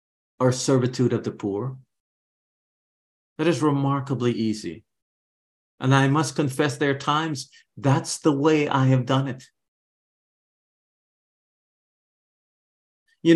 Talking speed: 110 wpm